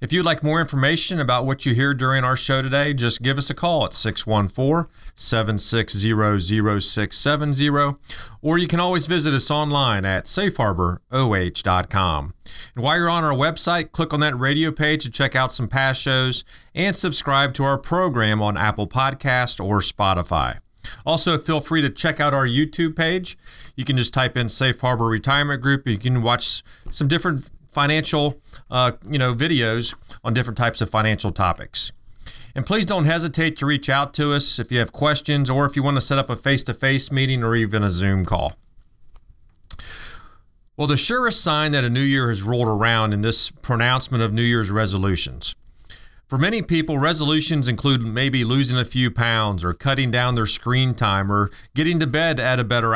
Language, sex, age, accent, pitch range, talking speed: English, male, 30-49, American, 110-145 Hz, 180 wpm